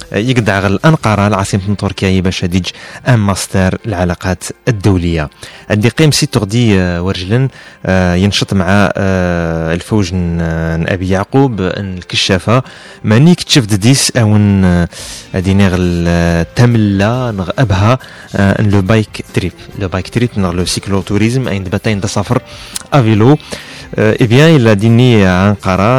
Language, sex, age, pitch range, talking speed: Arabic, male, 30-49, 95-120 Hz, 110 wpm